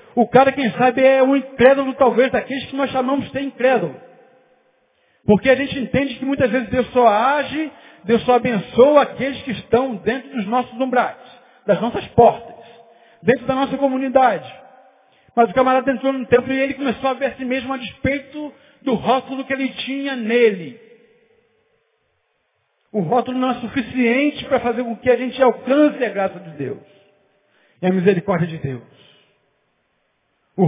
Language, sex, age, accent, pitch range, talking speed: Portuguese, male, 60-79, Brazilian, 220-260 Hz, 165 wpm